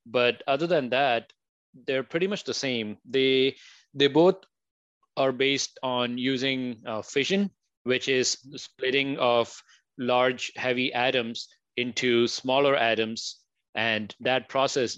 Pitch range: 120-140 Hz